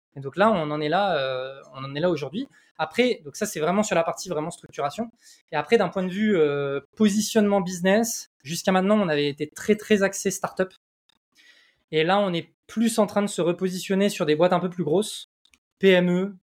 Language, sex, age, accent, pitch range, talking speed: French, male, 20-39, French, 165-215 Hz, 220 wpm